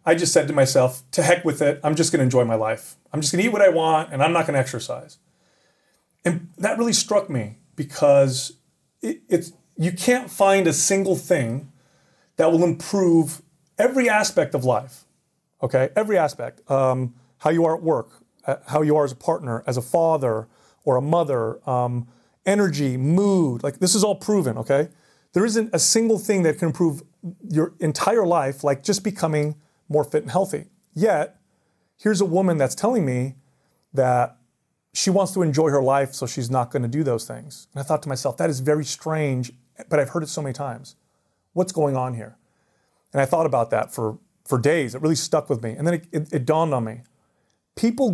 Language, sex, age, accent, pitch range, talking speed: English, male, 30-49, American, 130-170 Hz, 205 wpm